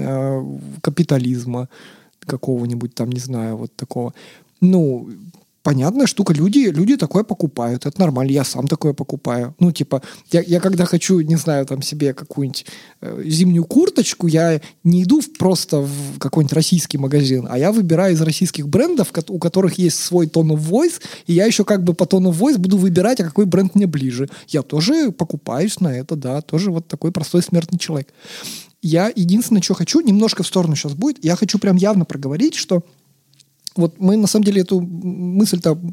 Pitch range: 150-195 Hz